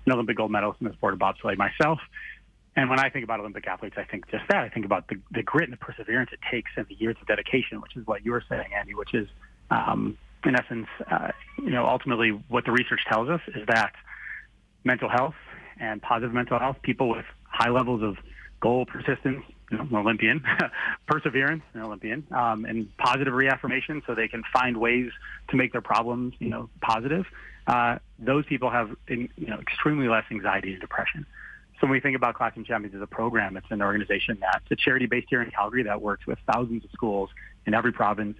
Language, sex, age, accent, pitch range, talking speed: English, male, 30-49, American, 105-125 Hz, 210 wpm